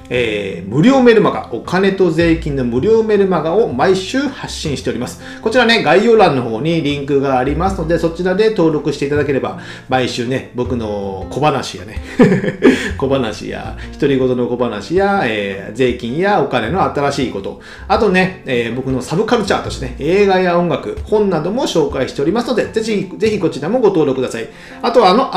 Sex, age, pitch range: male, 40-59, 130-210 Hz